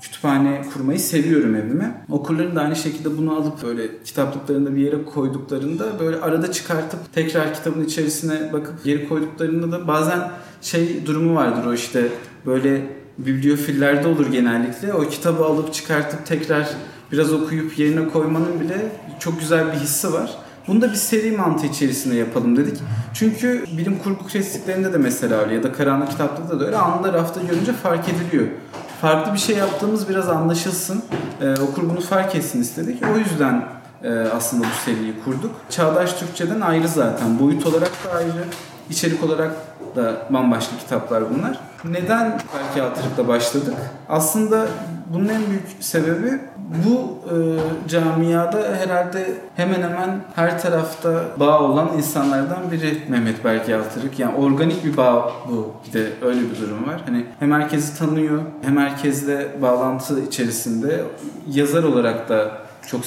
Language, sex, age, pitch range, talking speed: Turkish, male, 40-59, 135-170 Hz, 145 wpm